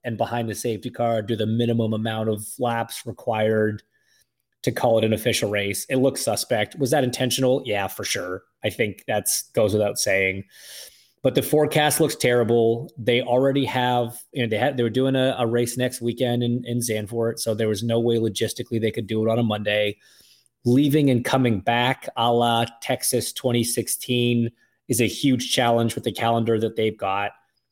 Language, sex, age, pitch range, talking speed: English, male, 30-49, 110-125 Hz, 190 wpm